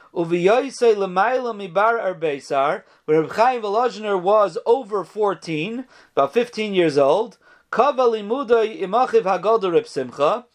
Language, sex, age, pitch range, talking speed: English, male, 40-59, 170-235 Hz, 120 wpm